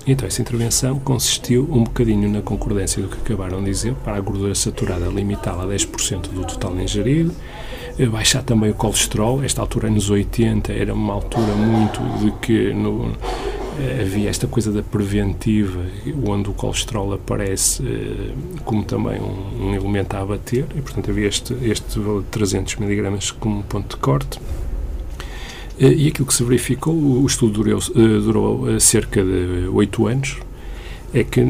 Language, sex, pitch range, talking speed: Portuguese, male, 95-125 Hz, 155 wpm